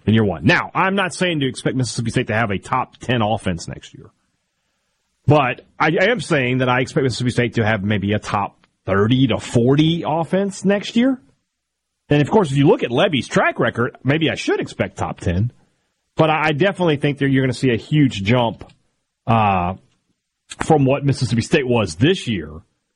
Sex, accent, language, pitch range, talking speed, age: male, American, English, 100-135 Hz, 195 wpm, 30-49